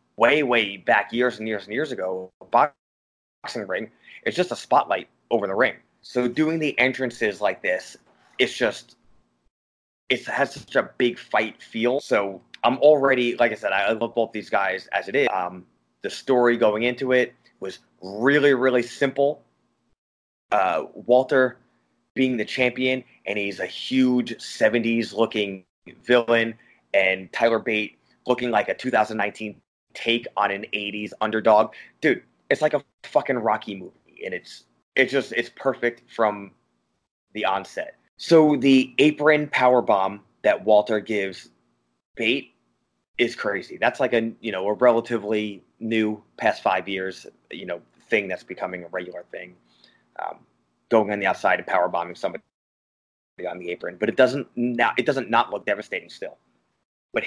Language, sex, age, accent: English, male, 20-39, American